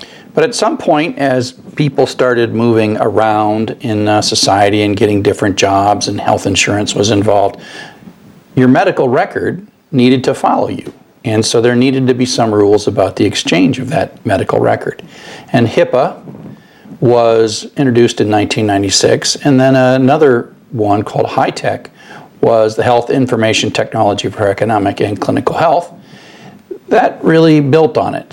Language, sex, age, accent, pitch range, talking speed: English, male, 50-69, American, 110-135 Hz, 150 wpm